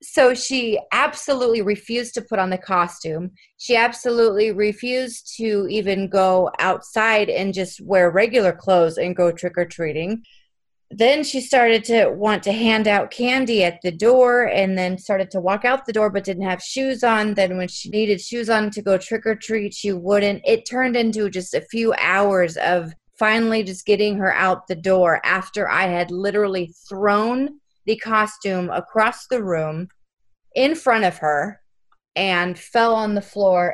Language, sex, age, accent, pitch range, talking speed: English, female, 30-49, American, 190-225 Hz, 165 wpm